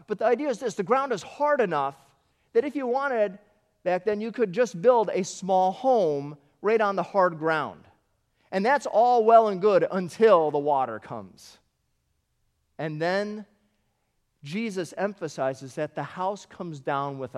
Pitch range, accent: 140-205 Hz, American